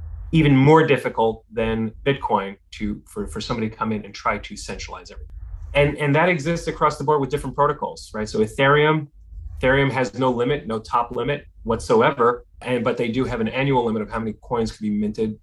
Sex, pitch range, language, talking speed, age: male, 100-130 Hz, English, 205 wpm, 30-49